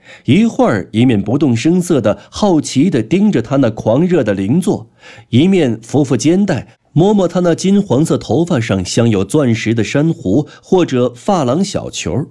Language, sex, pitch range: Chinese, male, 105-150 Hz